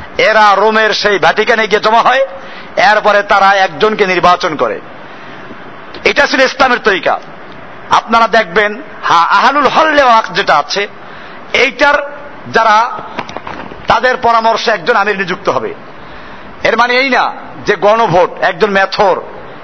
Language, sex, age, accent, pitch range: Bengali, male, 50-69, native, 205-255 Hz